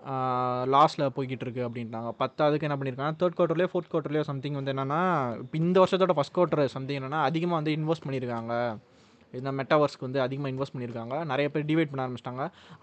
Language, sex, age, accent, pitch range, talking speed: Tamil, male, 20-39, native, 130-165 Hz, 170 wpm